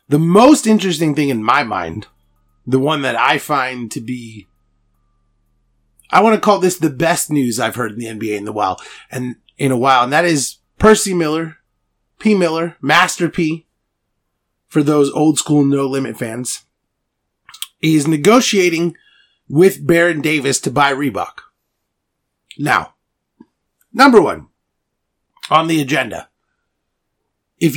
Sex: male